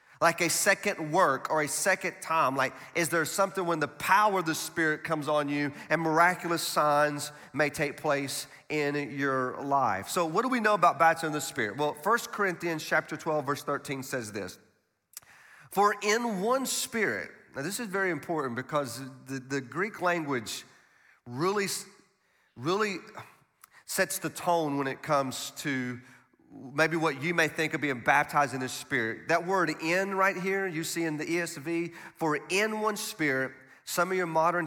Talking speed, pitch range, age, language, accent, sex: 175 wpm, 140-175 Hz, 40-59, English, American, male